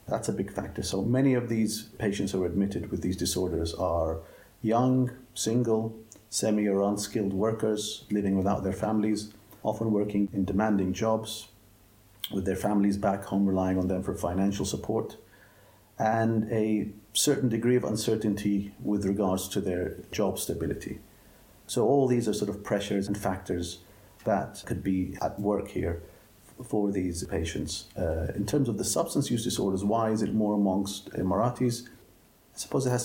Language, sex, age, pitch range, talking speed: English, male, 50-69, 95-110 Hz, 165 wpm